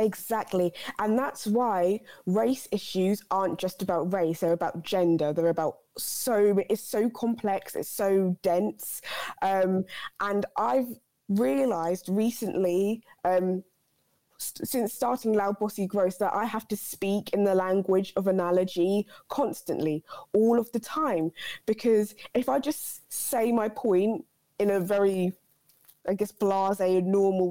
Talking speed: 135 wpm